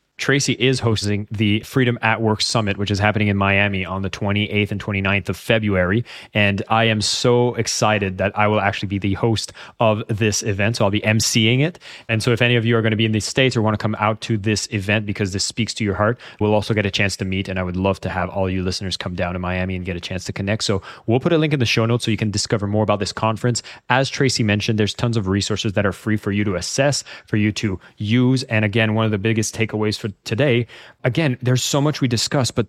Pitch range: 100-115 Hz